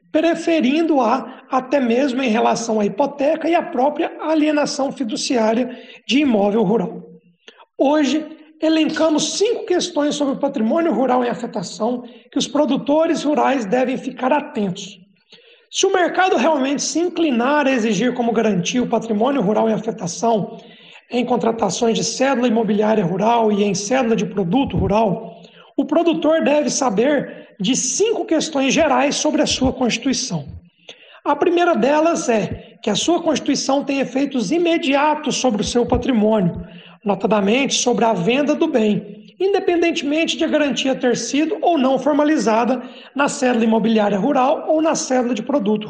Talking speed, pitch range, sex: 145 wpm, 225-300 Hz, male